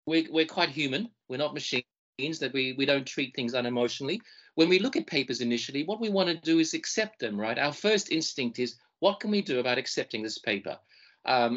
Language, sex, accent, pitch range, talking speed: English, male, Australian, 120-190 Hz, 215 wpm